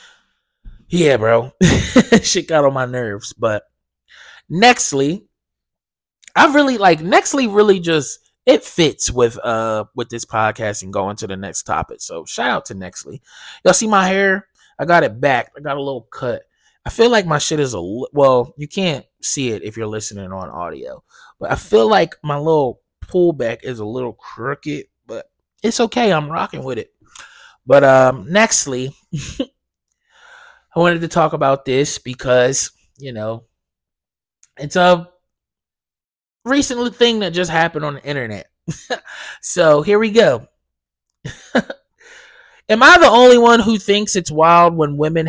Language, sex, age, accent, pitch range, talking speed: English, male, 20-39, American, 135-195 Hz, 160 wpm